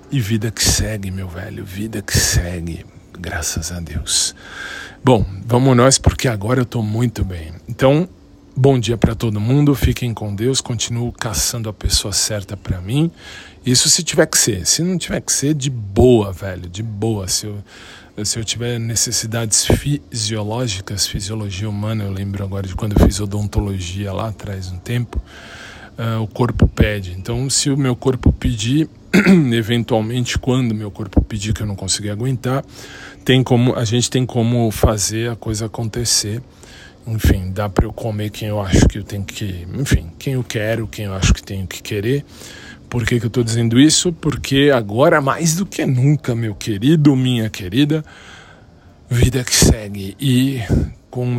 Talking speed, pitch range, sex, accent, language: 175 wpm, 100-125 Hz, male, Brazilian, Portuguese